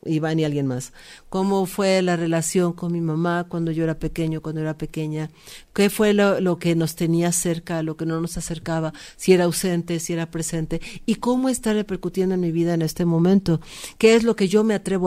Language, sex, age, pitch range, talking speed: Spanish, female, 50-69, 170-210 Hz, 215 wpm